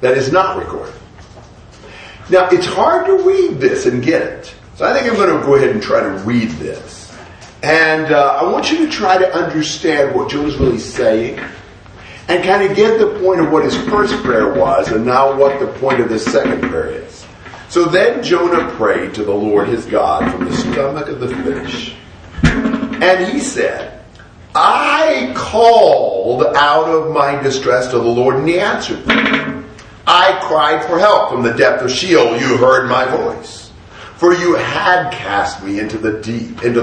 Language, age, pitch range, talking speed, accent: English, 50-69, 125-185 Hz, 185 wpm, American